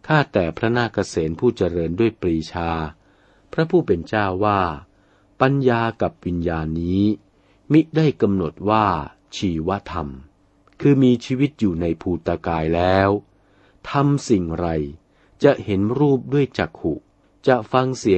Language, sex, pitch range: Thai, male, 85-120 Hz